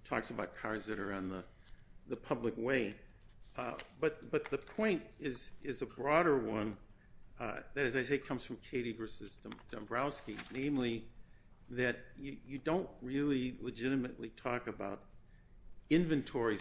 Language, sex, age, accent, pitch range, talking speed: English, male, 60-79, American, 110-140 Hz, 150 wpm